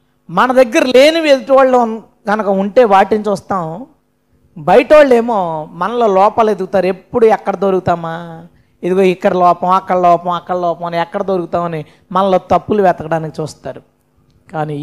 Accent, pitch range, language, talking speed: native, 175-245 Hz, Telugu, 130 wpm